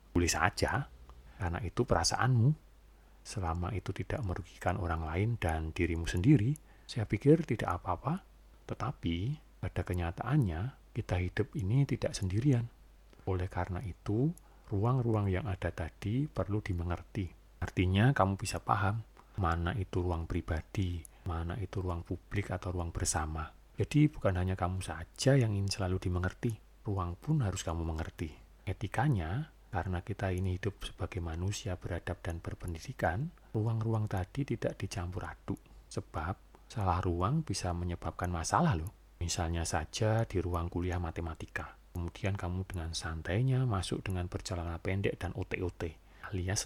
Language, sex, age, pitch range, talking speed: Indonesian, male, 40-59, 85-115 Hz, 130 wpm